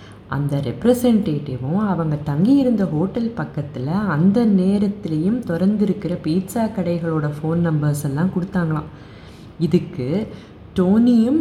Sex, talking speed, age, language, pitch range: female, 90 wpm, 20-39, Tamil, 155-205 Hz